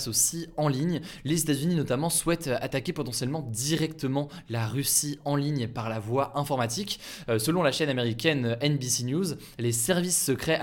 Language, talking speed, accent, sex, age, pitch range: French, 165 wpm, French, male, 20-39, 120-155 Hz